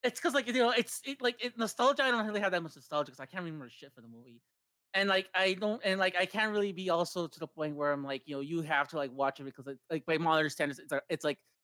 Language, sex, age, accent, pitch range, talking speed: English, male, 30-49, American, 170-255 Hz, 310 wpm